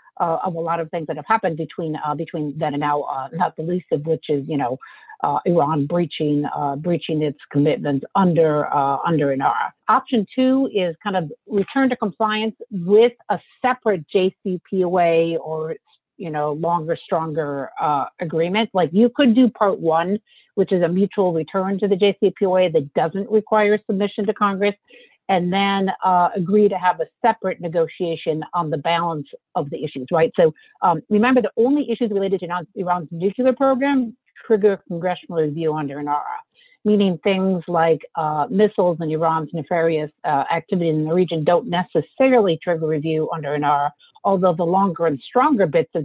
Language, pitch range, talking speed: English, 155-205 Hz, 175 wpm